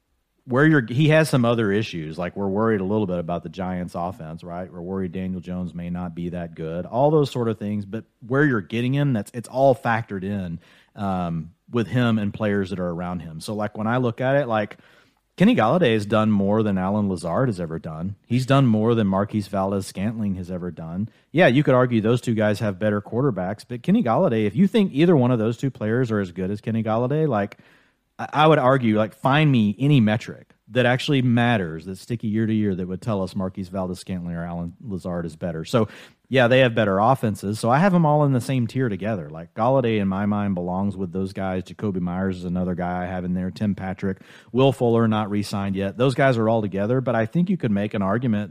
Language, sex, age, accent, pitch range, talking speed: English, male, 30-49, American, 95-120 Hz, 235 wpm